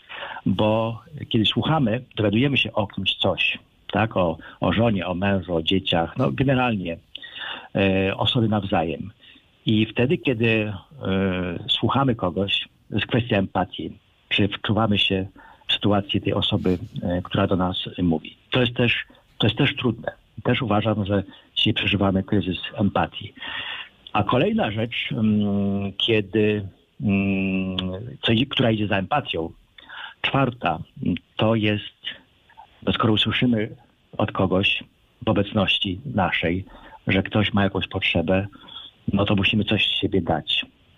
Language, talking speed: Polish, 115 wpm